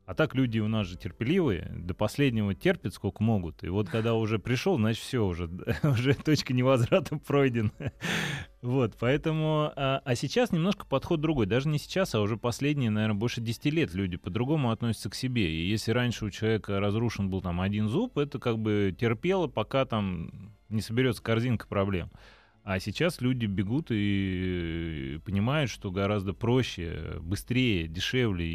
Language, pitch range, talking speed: Russian, 95-135 Hz, 165 wpm